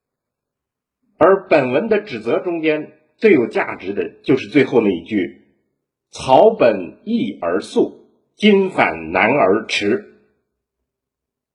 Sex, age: male, 50-69